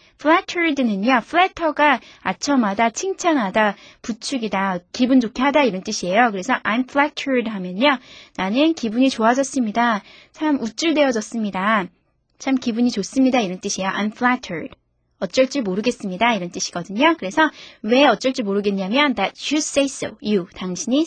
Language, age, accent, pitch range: Korean, 20-39, native, 205-280 Hz